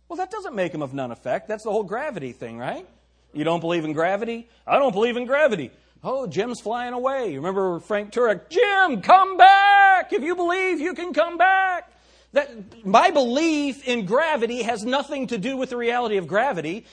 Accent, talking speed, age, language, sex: American, 200 wpm, 40-59, English, male